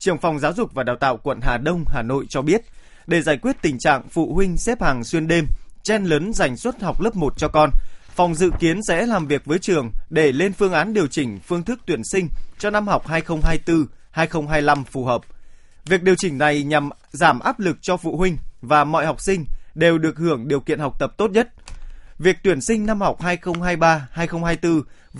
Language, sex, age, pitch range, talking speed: Vietnamese, male, 20-39, 140-185 Hz, 210 wpm